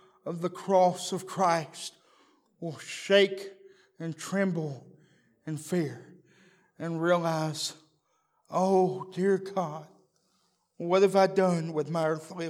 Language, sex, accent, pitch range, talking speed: English, male, American, 190-260 Hz, 110 wpm